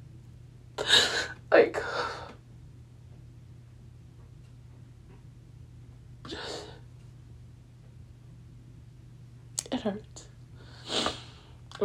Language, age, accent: English, 20-39, American